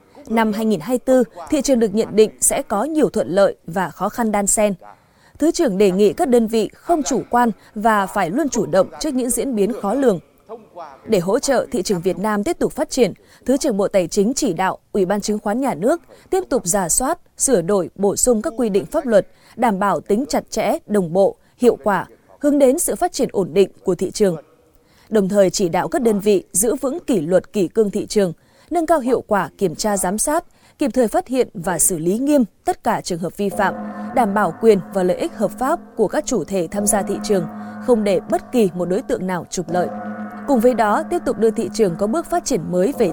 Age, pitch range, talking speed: 20-39, 195-250 Hz, 240 wpm